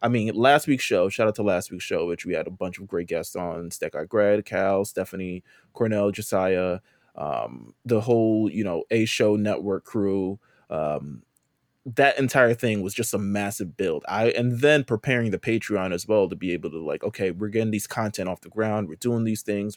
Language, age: English, 20-39